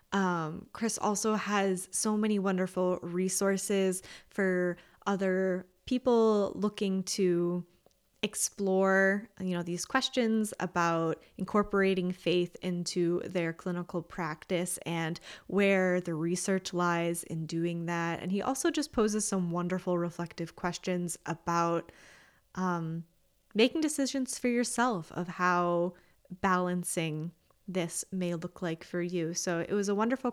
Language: English